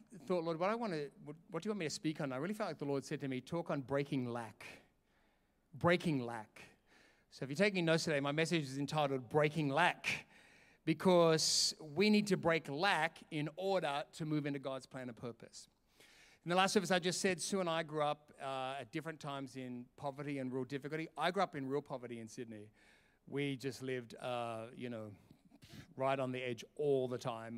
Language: English